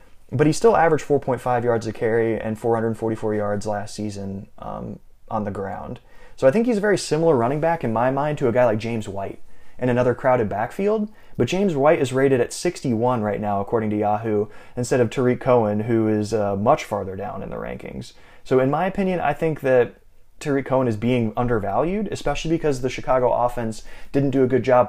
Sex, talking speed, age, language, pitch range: male, 205 wpm, 20-39, English, 110-160 Hz